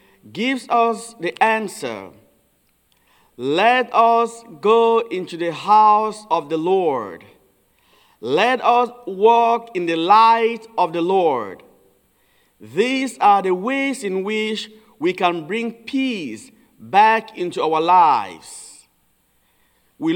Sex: male